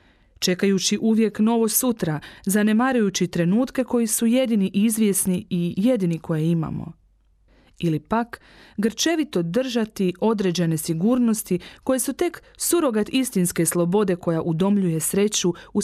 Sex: female